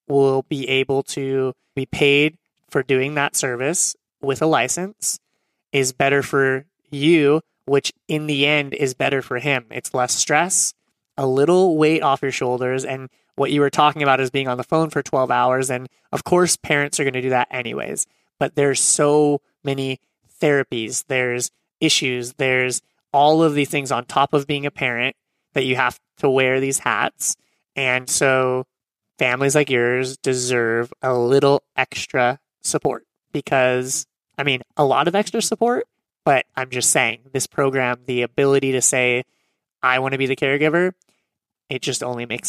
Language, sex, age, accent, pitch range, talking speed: English, male, 30-49, American, 130-150 Hz, 170 wpm